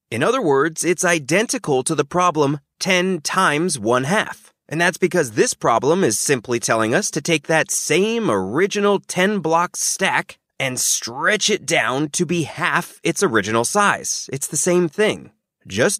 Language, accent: English, American